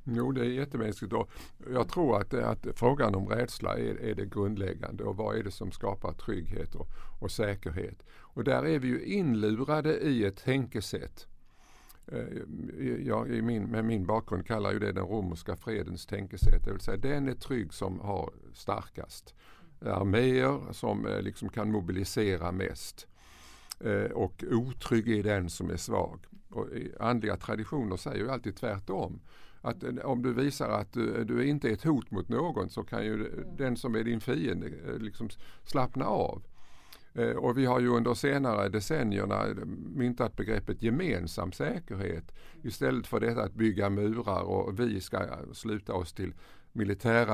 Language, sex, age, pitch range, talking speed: Swedish, male, 50-69, 100-120 Hz, 155 wpm